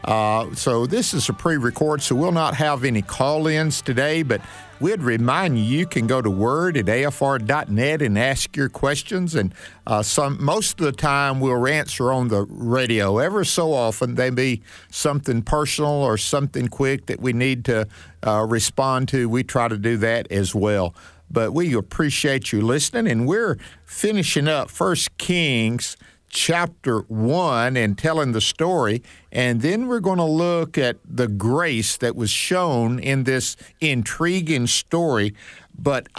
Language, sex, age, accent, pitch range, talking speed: English, male, 50-69, American, 115-155 Hz, 160 wpm